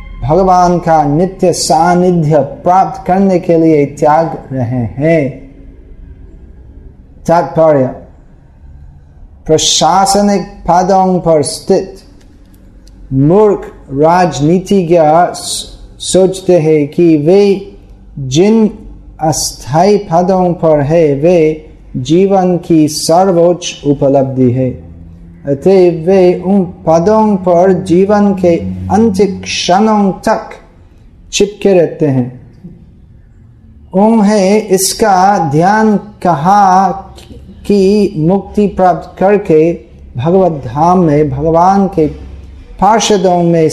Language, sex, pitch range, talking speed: Hindi, male, 135-190 Hz, 85 wpm